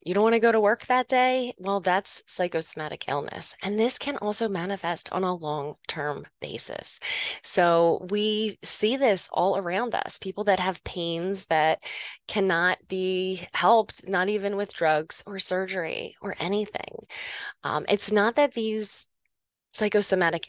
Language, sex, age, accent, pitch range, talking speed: English, female, 20-39, American, 170-215 Hz, 150 wpm